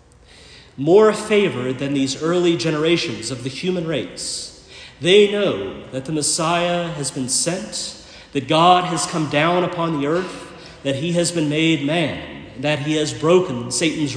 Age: 50-69